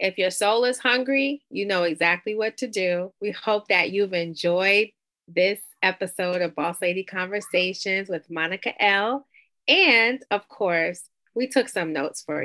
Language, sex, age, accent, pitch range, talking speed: English, female, 30-49, American, 170-230 Hz, 160 wpm